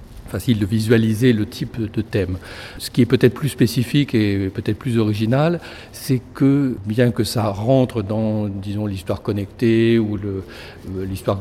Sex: male